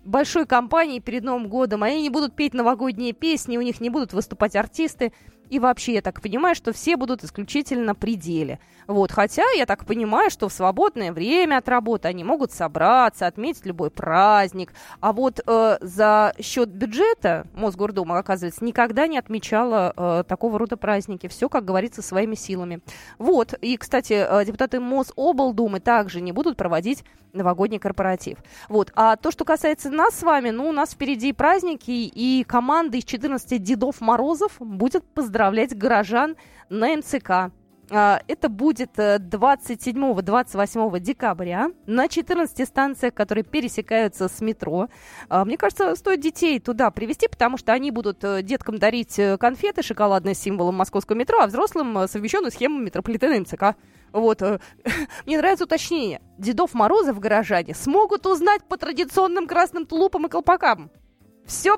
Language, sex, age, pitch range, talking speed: Russian, female, 20-39, 205-295 Hz, 150 wpm